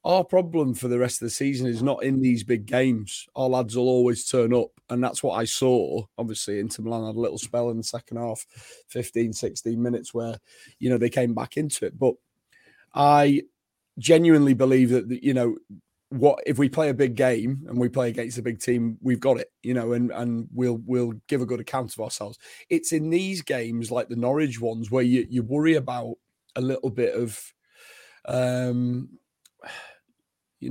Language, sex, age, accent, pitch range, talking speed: English, male, 30-49, British, 120-145 Hz, 200 wpm